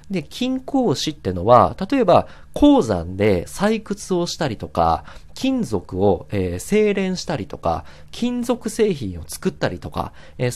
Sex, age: male, 40-59